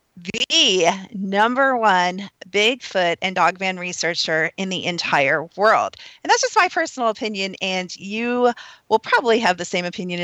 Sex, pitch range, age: female, 175-220 Hz, 40-59